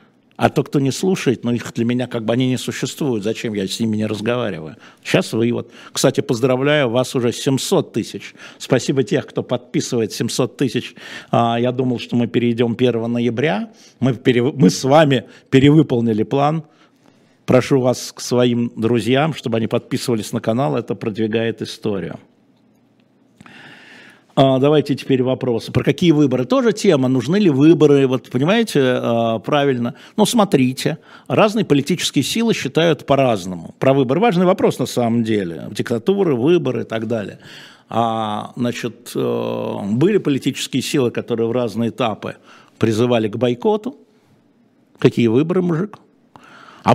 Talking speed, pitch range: 140 wpm, 115-145 Hz